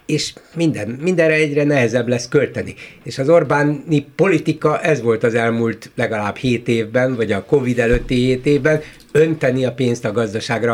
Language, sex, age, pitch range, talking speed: Hungarian, male, 60-79, 115-150 Hz, 160 wpm